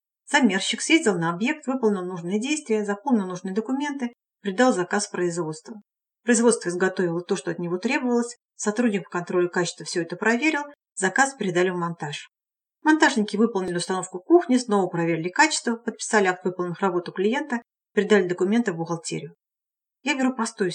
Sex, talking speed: female, 145 wpm